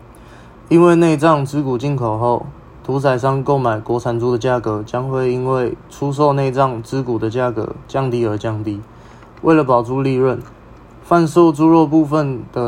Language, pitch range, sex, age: Chinese, 120-140 Hz, male, 20-39